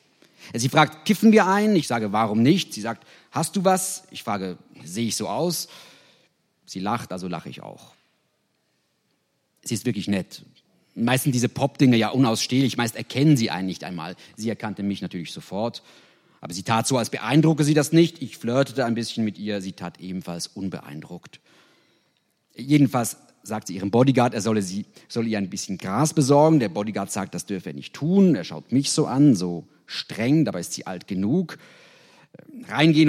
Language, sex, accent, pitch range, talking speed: German, male, German, 105-145 Hz, 185 wpm